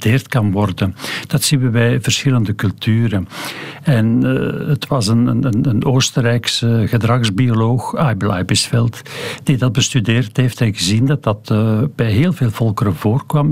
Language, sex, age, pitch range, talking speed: Dutch, male, 60-79, 110-140 Hz, 150 wpm